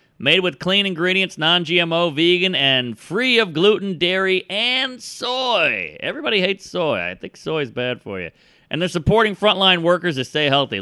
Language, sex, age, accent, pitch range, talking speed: English, male, 40-59, American, 140-195 Hz, 170 wpm